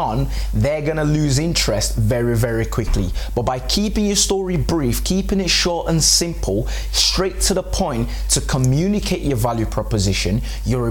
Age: 20-39